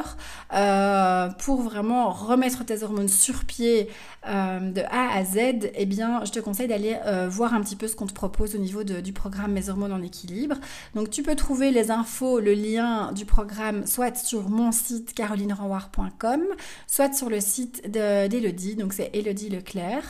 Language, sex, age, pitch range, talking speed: French, female, 30-49, 195-235 Hz, 175 wpm